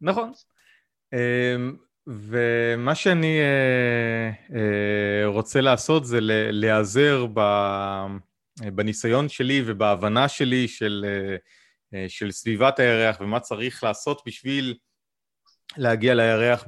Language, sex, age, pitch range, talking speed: Hebrew, male, 30-49, 100-125 Hz, 75 wpm